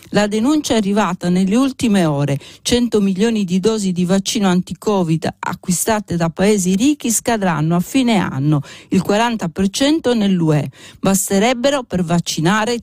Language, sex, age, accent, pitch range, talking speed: Italian, female, 50-69, native, 165-205 Hz, 130 wpm